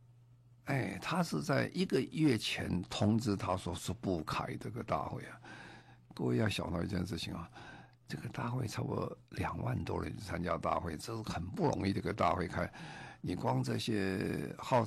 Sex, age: male, 50-69